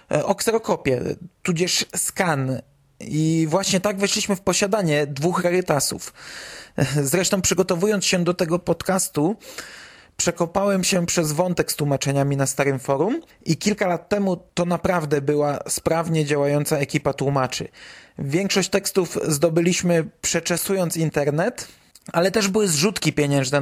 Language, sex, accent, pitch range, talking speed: Polish, male, native, 150-185 Hz, 120 wpm